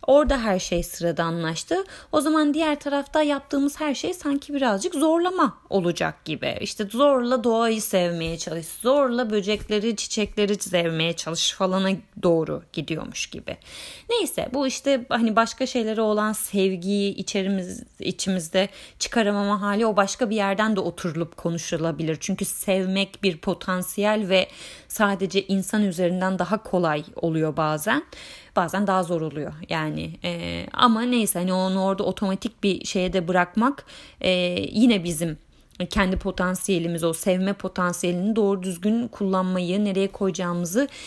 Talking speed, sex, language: 130 wpm, female, Turkish